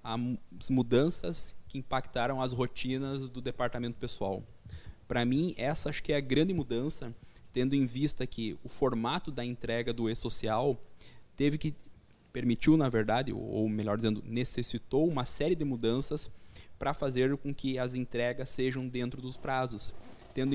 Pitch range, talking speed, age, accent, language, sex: 115-140 Hz, 150 wpm, 20-39, Brazilian, Portuguese, male